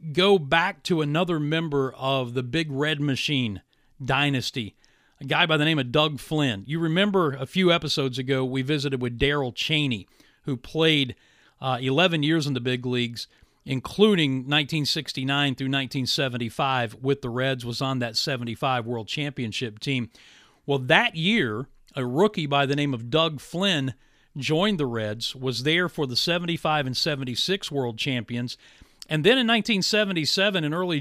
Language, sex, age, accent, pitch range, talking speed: English, male, 40-59, American, 130-165 Hz, 160 wpm